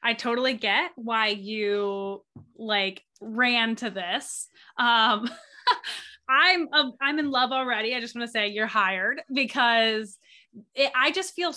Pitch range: 210-255 Hz